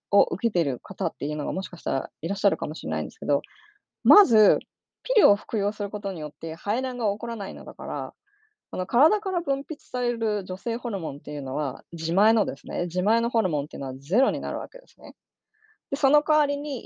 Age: 20-39